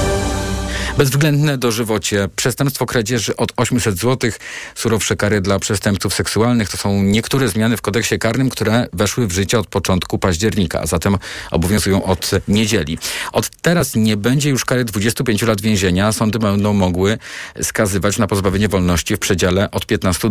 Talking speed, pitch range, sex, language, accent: 150 wpm, 95-115 Hz, male, Polish, native